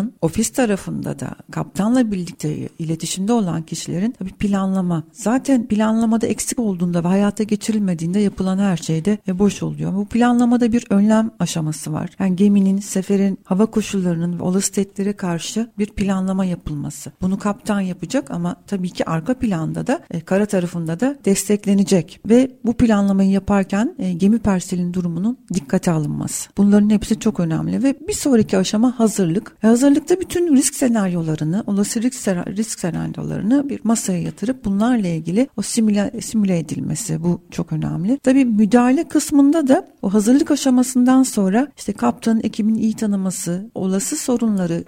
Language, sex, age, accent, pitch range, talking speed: Turkish, female, 60-79, native, 185-235 Hz, 140 wpm